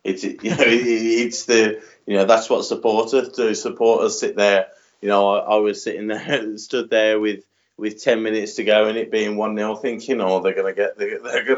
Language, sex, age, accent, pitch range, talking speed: English, male, 20-39, British, 100-135 Hz, 225 wpm